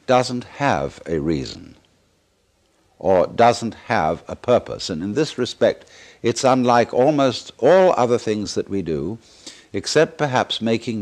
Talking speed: 135 wpm